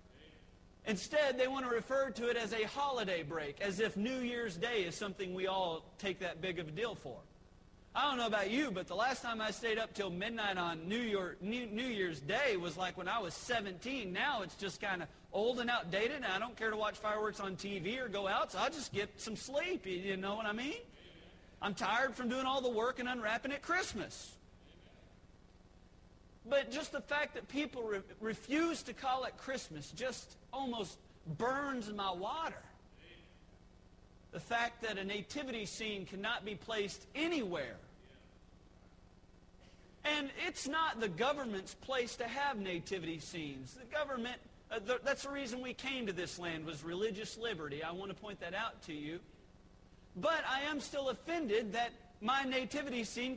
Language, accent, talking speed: English, American, 180 wpm